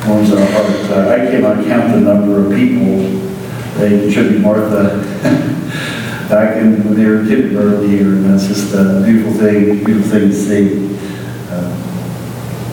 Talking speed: 140 wpm